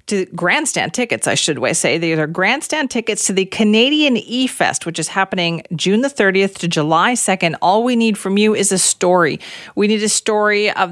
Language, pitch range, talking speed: English, 170-220 Hz, 200 wpm